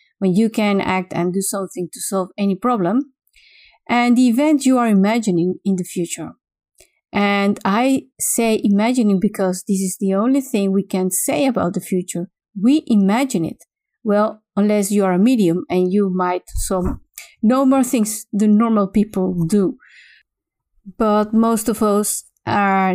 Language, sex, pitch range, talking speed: English, female, 190-245 Hz, 160 wpm